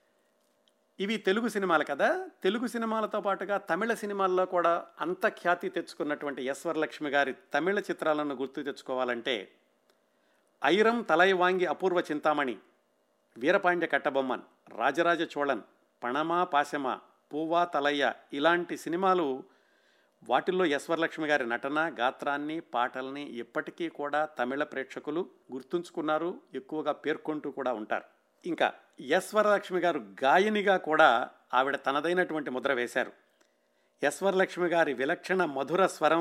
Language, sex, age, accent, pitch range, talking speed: Telugu, male, 50-69, native, 130-175 Hz, 105 wpm